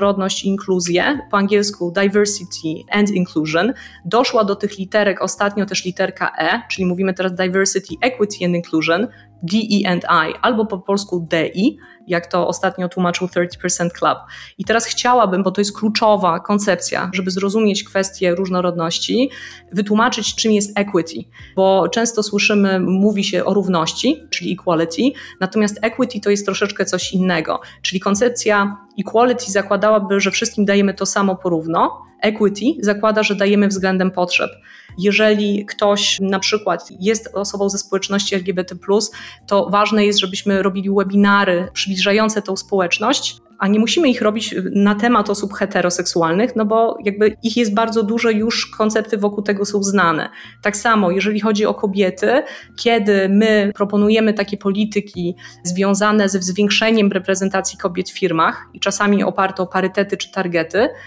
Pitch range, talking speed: 190-220 Hz, 145 wpm